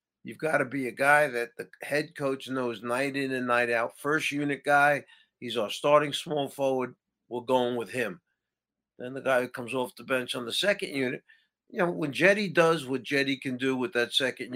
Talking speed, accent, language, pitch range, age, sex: 215 wpm, American, English, 125-150 Hz, 50-69, male